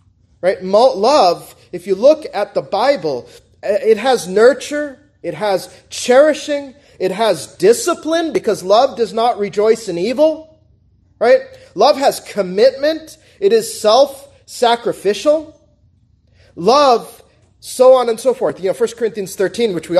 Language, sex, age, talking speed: English, male, 30-49, 135 wpm